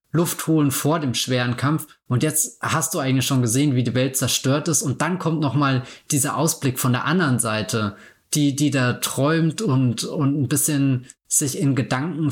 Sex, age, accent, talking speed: male, 20-39, German, 190 wpm